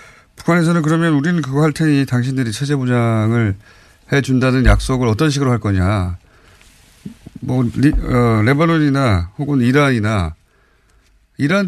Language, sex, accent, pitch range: Korean, male, native, 110-155 Hz